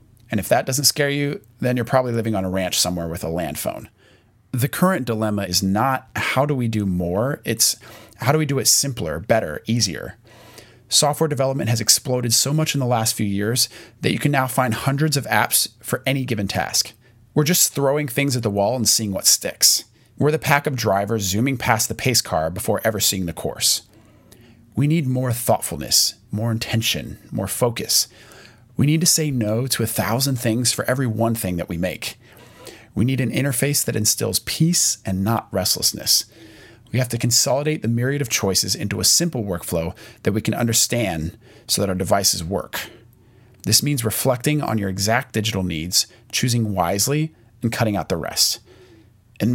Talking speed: 190 wpm